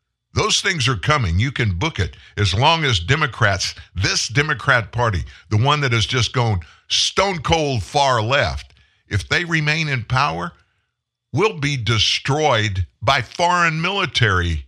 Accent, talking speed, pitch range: American, 145 wpm, 100-135 Hz